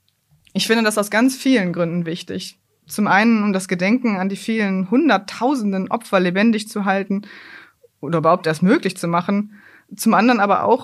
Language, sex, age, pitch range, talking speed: German, female, 20-39, 170-215 Hz, 170 wpm